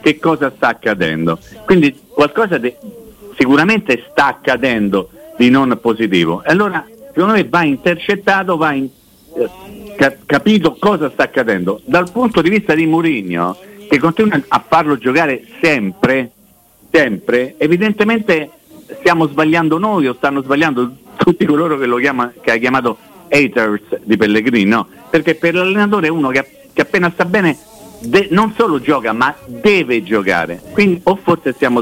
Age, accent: 50-69, native